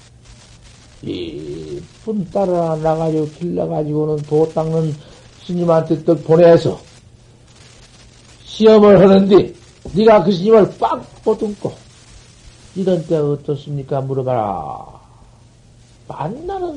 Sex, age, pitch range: male, 60-79, 120-185 Hz